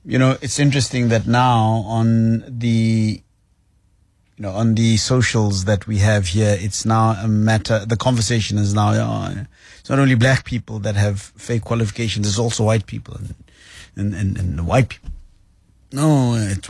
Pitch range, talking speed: 95-115 Hz, 175 wpm